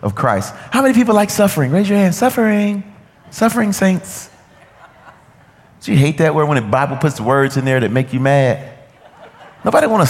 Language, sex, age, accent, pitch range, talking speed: English, male, 40-59, American, 160-220 Hz, 185 wpm